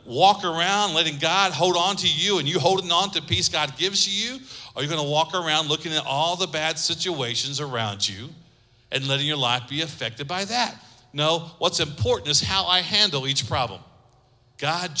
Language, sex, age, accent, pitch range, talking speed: English, male, 50-69, American, 125-170 Hz, 195 wpm